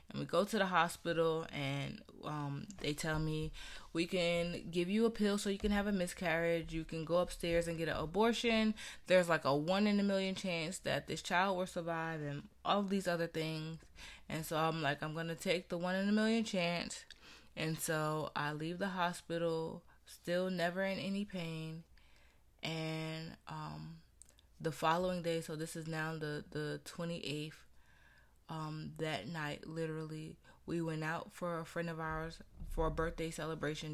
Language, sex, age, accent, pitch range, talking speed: English, female, 20-39, American, 150-175 Hz, 180 wpm